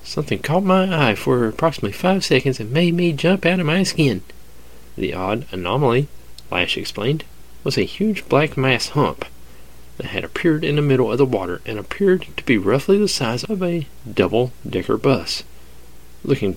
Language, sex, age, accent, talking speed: English, male, 40-59, American, 175 wpm